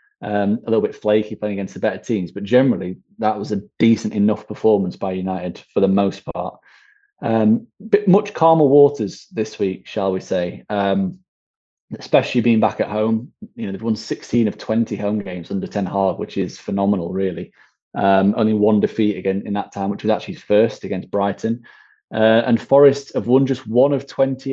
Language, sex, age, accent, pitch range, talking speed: English, male, 20-39, British, 100-125 Hz, 195 wpm